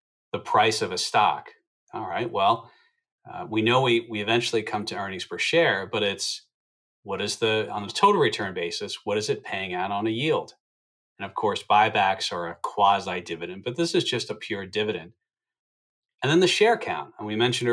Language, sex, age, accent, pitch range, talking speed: English, male, 40-59, American, 100-155 Hz, 200 wpm